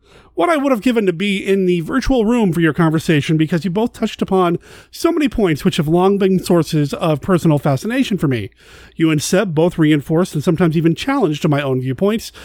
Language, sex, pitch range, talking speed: English, male, 150-205 Hz, 210 wpm